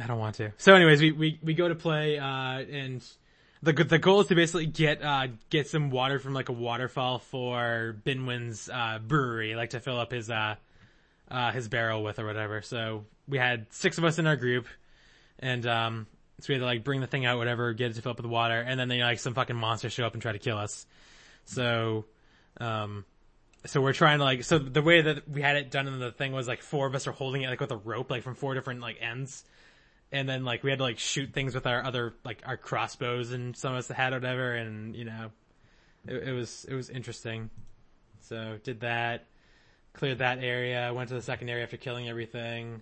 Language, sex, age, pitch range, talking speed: English, male, 20-39, 115-130 Hz, 240 wpm